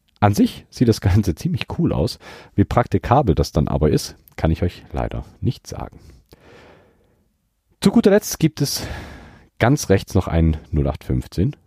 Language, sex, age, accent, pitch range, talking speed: German, male, 40-59, German, 75-100 Hz, 155 wpm